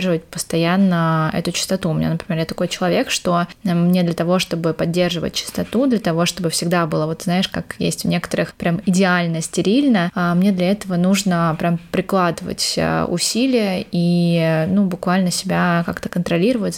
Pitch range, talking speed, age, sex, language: 170-190 Hz, 155 wpm, 20-39, female, Russian